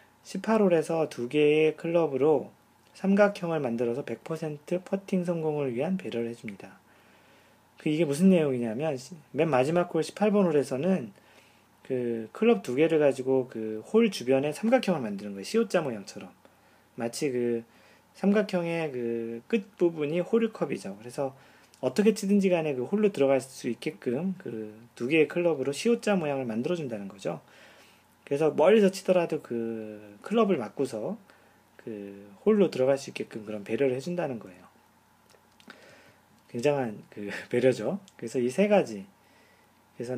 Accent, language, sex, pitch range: native, Korean, male, 120-190 Hz